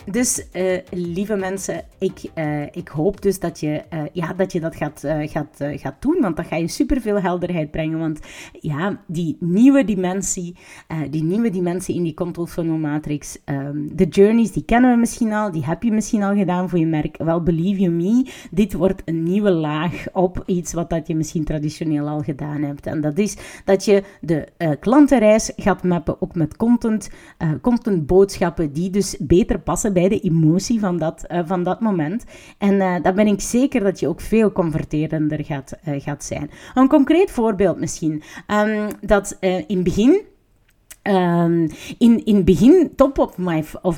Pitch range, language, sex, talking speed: 165-215 Hz, Dutch, female, 190 wpm